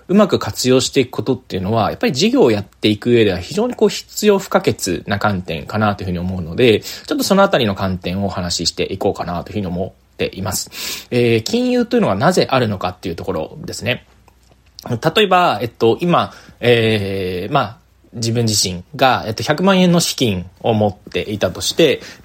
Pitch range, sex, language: 100-125 Hz, male, Japanese